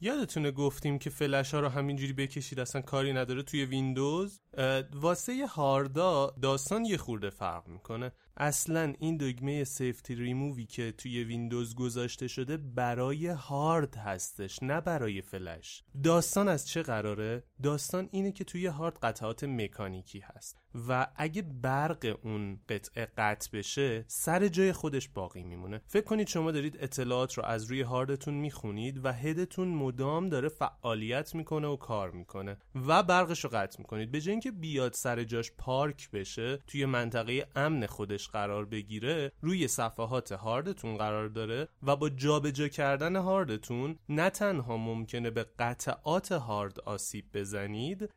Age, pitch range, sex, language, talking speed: 30-49, 115-165 Hz, male, Persian, 145 wpm